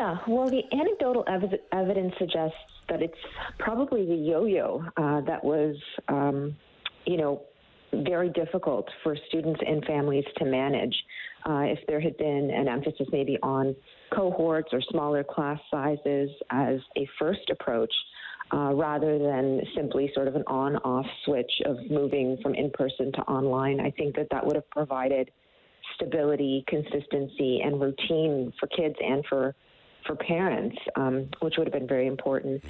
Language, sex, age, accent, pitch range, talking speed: English, female, 40-59, American, 140-170 Hz, 150 wpm